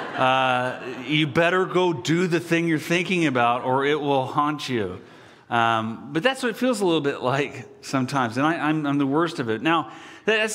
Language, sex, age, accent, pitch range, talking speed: English, male, 40-59, American, 135-195 Hz, 200 wpm